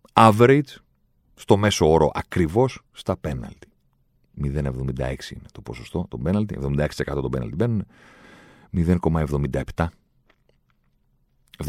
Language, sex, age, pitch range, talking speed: Greek, male, 40-59, 75-95 Hz, 100 wpm